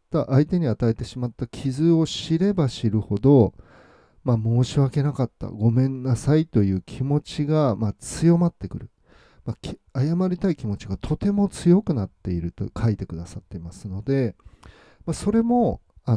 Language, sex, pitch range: Japanese, male, 100-150 Hz